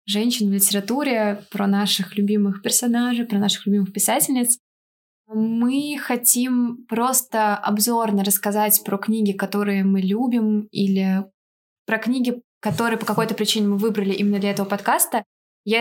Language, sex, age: Russian, female, 20-39